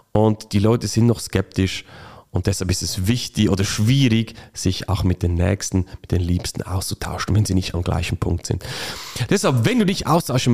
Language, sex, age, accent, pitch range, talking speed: German, male, 40-59, German, 95-125 Hz, 195 wpm